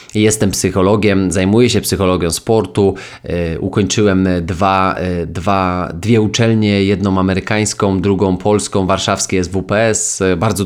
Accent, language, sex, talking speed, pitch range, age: native, Polish, male, 105 wpm, 95-105 Hz, 20-39